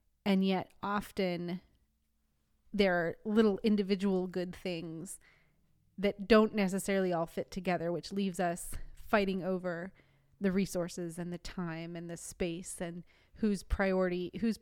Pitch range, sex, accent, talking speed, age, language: 170-200 Hz, female, American, 130 wpm, 30-49, English